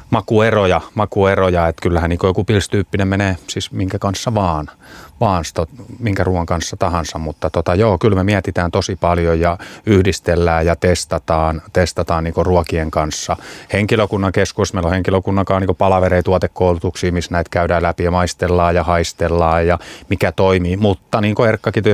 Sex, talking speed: male, 160 wpm